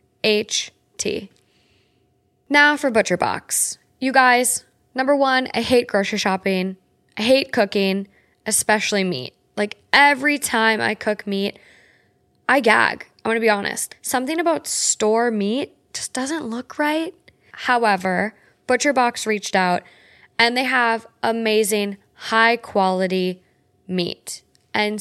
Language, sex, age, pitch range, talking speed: English, female, 10-29, 190-235 Hz, 125 wpm